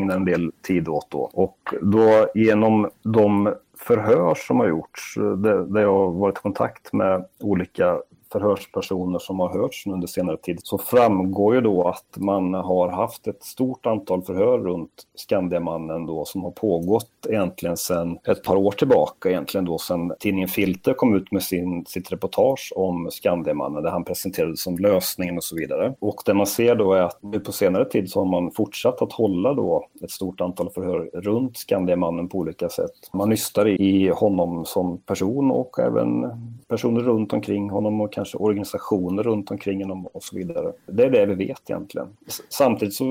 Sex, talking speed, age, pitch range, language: male, 175 wpm, 40-59, 90-105 Hz, Swedish